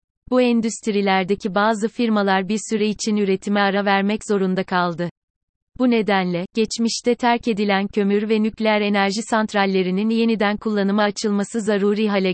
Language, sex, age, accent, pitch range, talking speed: Turkish, female, 30-49, native, 190-225 Hz, 130 wpm